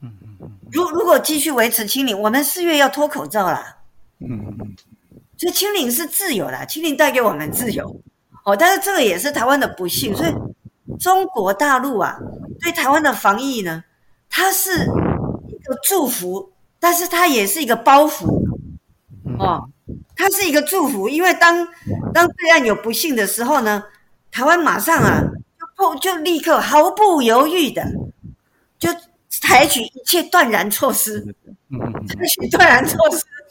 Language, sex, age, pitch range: Japanese, female, 50-69, 205-330 Hz